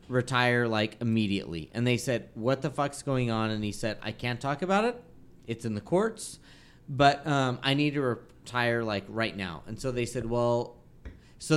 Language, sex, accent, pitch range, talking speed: English, male, American, 110-145 Hz, 195 wpm